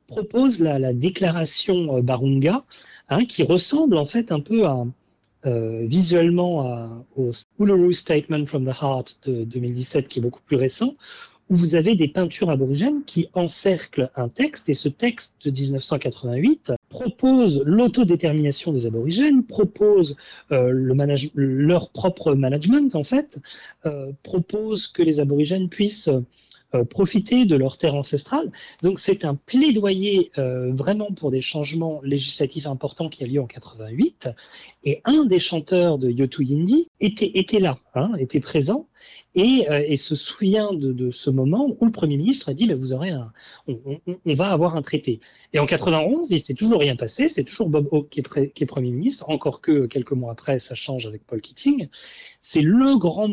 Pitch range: 135-195 Hz